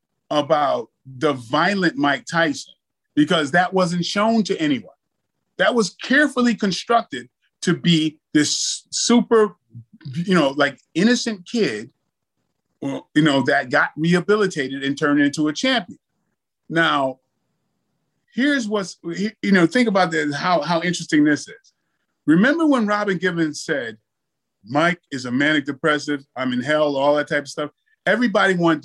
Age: 30-49